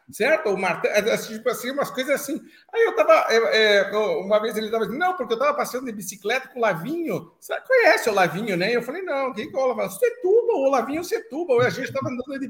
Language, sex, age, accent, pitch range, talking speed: Portuguese, male, 50-69, Brazilian, 185-270 Hz, 250 wpm